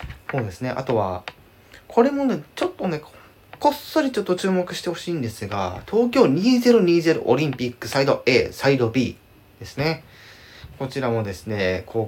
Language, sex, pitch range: Japanese, male, 95-135 Hz